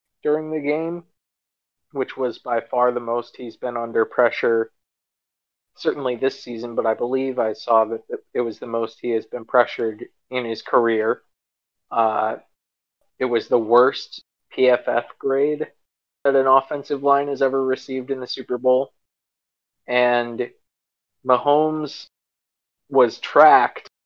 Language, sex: English, male